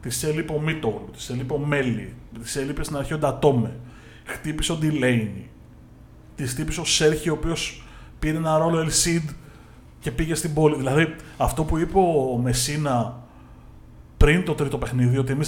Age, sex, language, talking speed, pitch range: 30-49, male, Greek, 165 wpm, 115-155 Hz